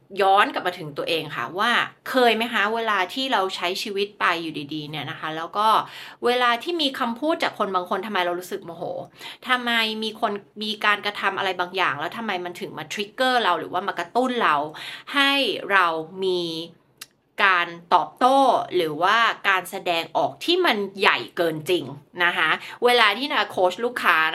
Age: 20-39